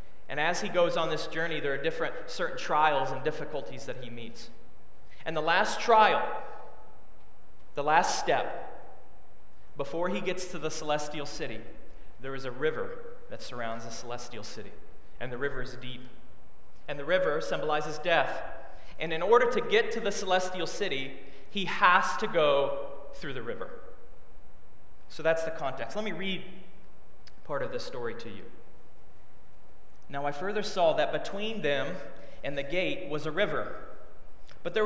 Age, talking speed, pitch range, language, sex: 30-49, 160 wpm, 145-200 Hz, English, male